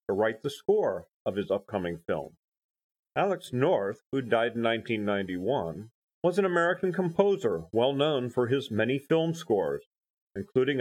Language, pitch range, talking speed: English, 115-165 Hz, 155 wpm